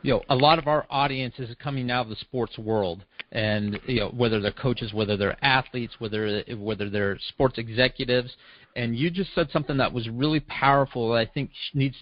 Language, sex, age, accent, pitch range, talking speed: English, male, 40-59, American, 115-145 Hz, 205 wpm